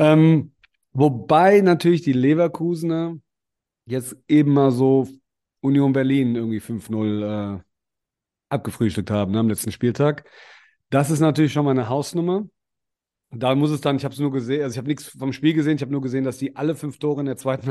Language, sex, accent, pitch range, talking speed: German, male, German, 120-140 Hz, 175 wpm